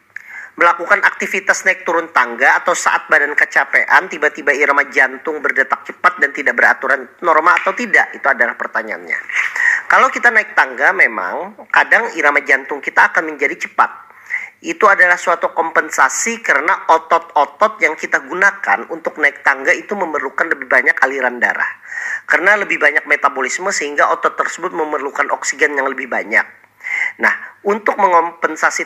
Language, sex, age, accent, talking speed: Indonesian, male, 40-59, native, 140 wpm